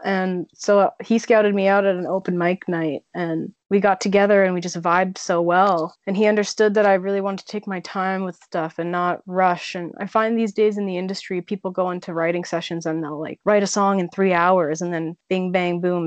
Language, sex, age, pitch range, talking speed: English, female, 20-39, 170-195 Hz, 240 wpm